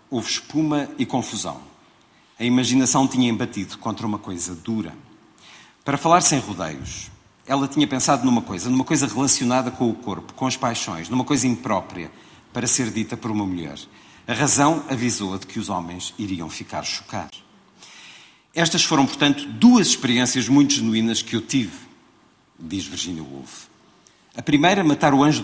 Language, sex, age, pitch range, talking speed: Portuguese, male, 50-69, 105-135 Hz, 160 wpm